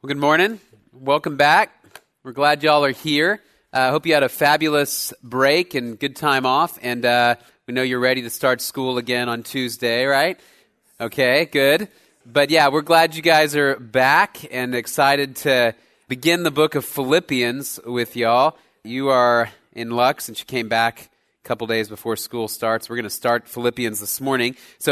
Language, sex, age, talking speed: English, male, 30-49, 185 wpm